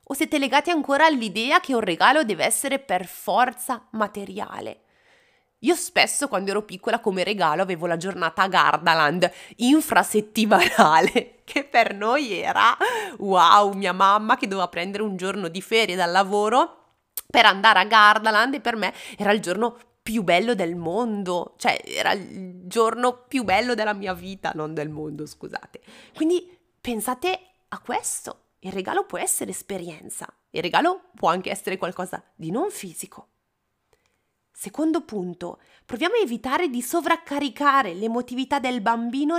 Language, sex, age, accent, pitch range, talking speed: Italian, female, 20-39, native, 190-275 Hz, 150 wpm